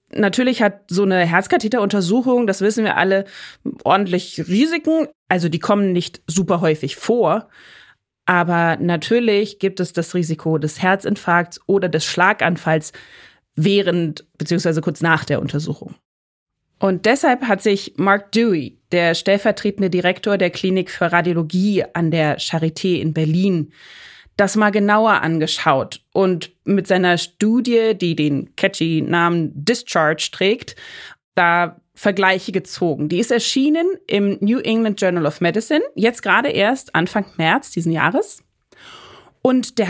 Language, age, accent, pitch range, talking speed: German, 30-49, German, 165-215 Hz, 130 wpm